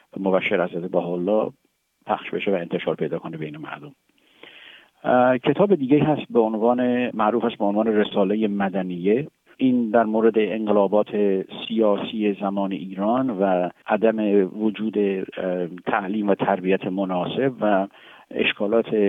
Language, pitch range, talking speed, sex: Persian, 95-115 Hz, 115 wpm, male